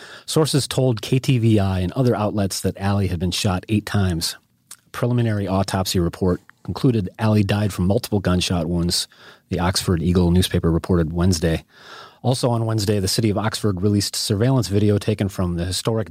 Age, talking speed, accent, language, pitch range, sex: 30-49, 160 wpm, American, English, 95-115 Hz, male